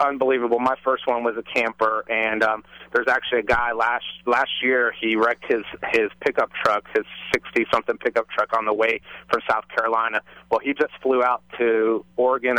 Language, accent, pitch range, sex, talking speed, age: English, American, 105-120 Hz, male, 185 wpm, 30-49